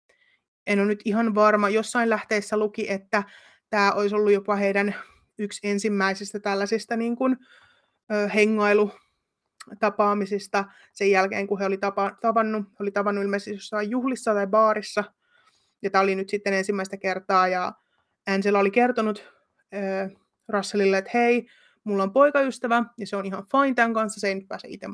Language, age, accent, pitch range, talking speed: Finnish, 20-39, native, 200-220 Hz, 155 wpm